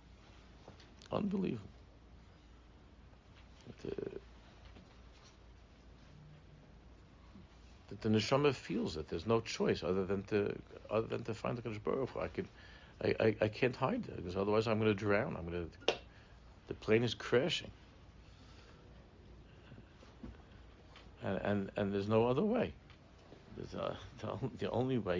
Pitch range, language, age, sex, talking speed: 85-110 Hz, English, 60-79, male, 130 wpm